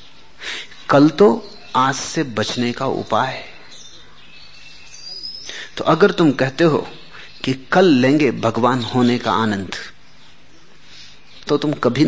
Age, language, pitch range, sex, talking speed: 30-49, Hindi, 135-185 Hz, male, 115 wpm